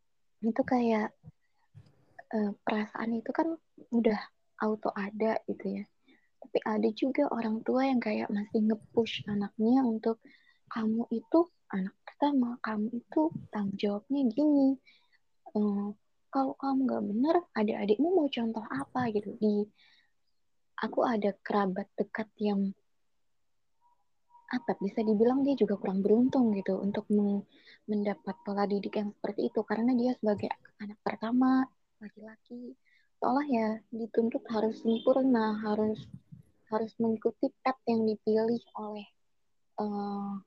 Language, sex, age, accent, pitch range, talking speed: Indonesian, female, 20-39, native, 210-255 Hz, 120 wpm